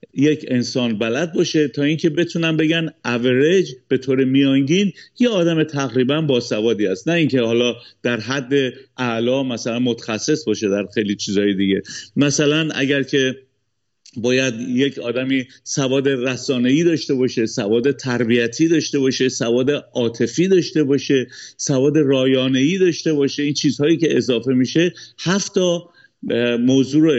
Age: 50-69